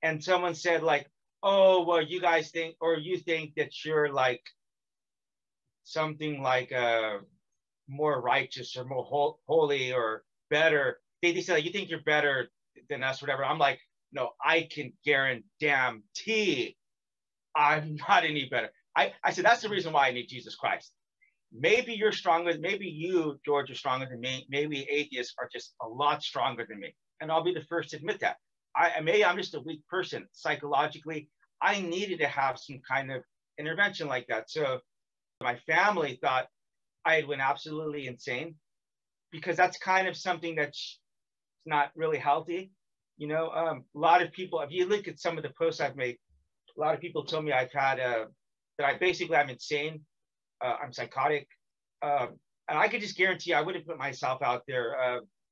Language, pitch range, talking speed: English, 135-170 Hz, 180 wpm